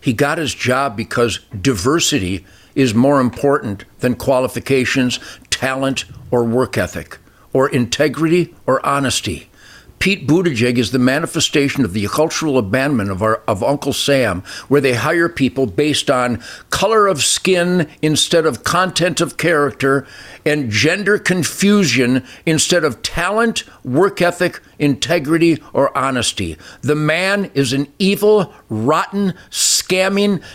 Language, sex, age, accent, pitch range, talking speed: English, male, 60-79, American, 135-190 Hz, 125 wpm